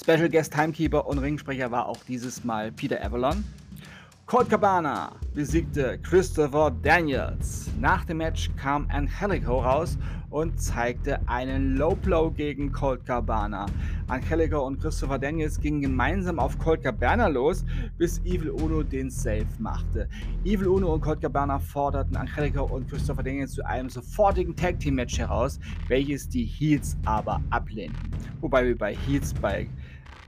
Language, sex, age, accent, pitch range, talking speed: German, male, 30-49, German, 105-150 Hz, 140 wpm